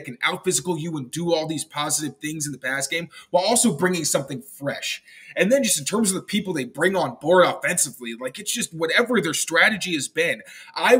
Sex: male